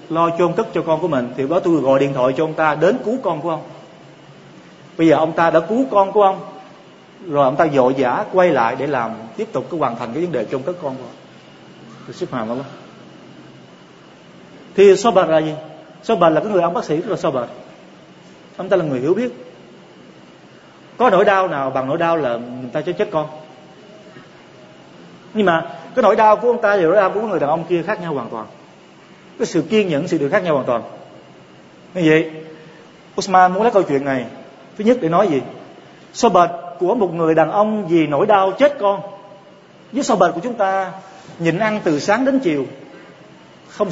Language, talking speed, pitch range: Vietnamese, 210 wpm, 160-200 Hz